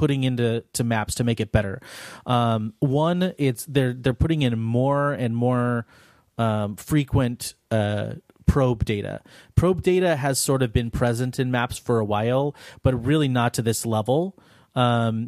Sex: male